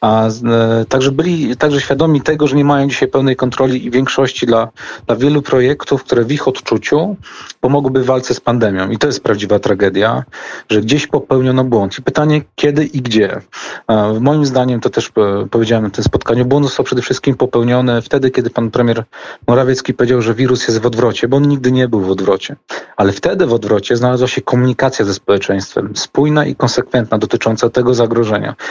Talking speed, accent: 180 wpm, native